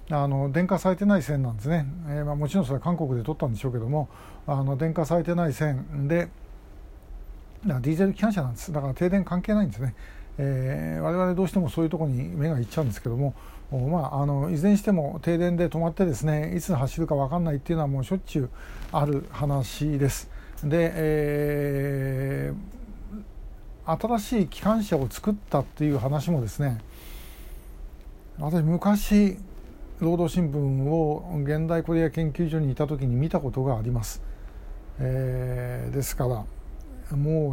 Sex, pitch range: male, 130-165 Hz